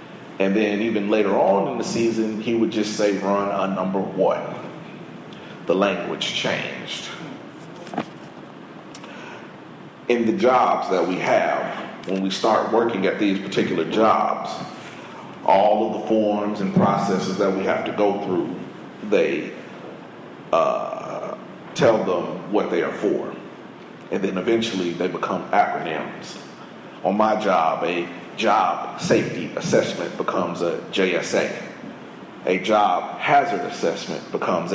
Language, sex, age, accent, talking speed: English, male, 40-59, American, 125 wpm